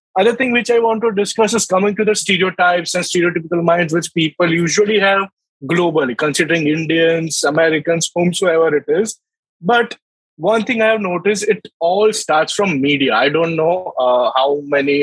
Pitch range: 160-200 Hz